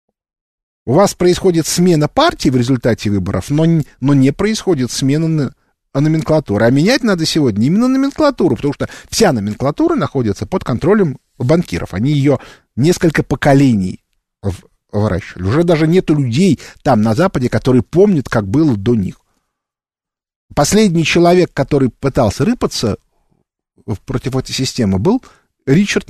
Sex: male